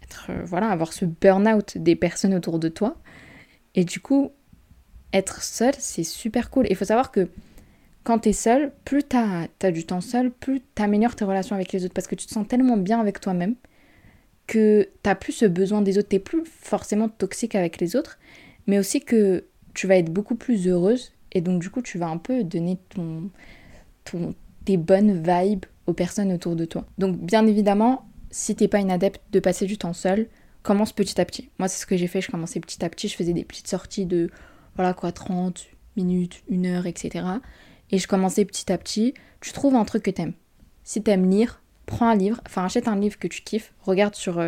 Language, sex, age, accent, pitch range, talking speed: French, female, 20-39, French, 180-220 Hz, 215 wpm